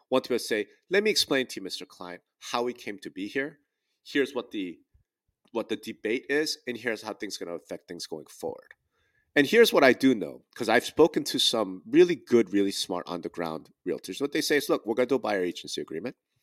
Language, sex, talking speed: English, male, 240 wpm